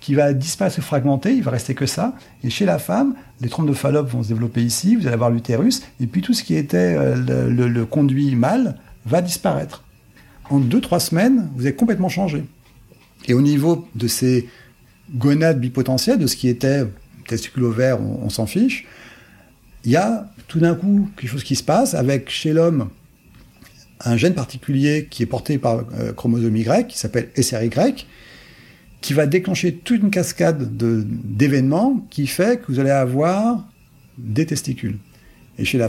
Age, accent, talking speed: 40-59, French, 185 wpm